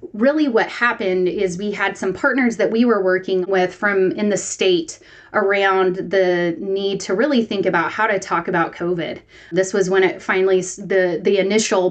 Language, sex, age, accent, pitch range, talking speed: English, female, 20-39, American, 180-215 Hz, 185 wpm